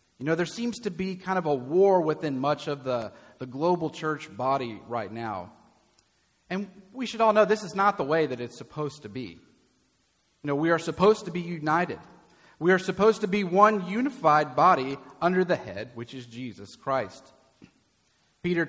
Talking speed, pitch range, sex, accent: 190 wpm, 140-190 Hz, male, American